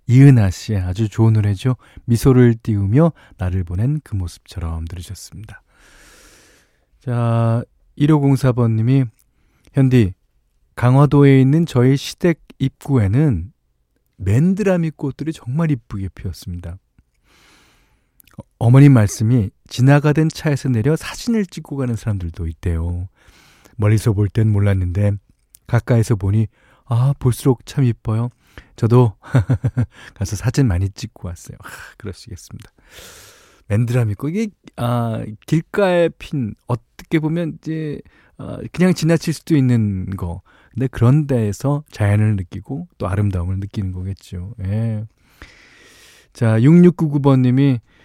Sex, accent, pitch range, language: male, native, 100-140 Hz, Korean